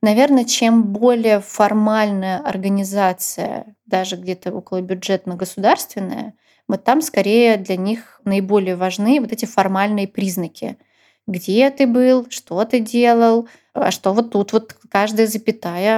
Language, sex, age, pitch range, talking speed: Russian, female, 20-39, 195-230 Hz, 125 wpm